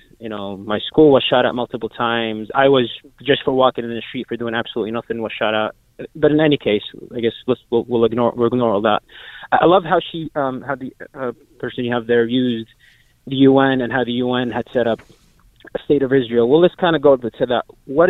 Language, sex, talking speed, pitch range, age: English, male, 235 wpm, 115-135 Hz, 20-39